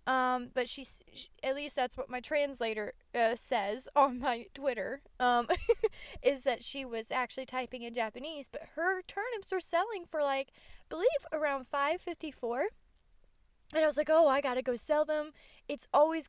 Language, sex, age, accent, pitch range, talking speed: English, female, 20-39, American, 255-330 Hz, 180 wpm